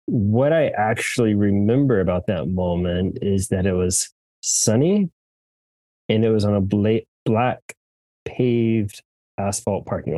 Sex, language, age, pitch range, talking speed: male, English, 20-39, 90-110 Hz, 130 wpm